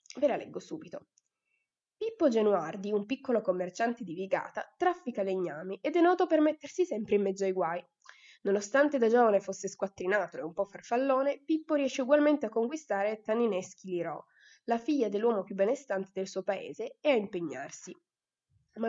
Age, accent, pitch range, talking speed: 20-39, native, 190-265 Hz, 160 wpm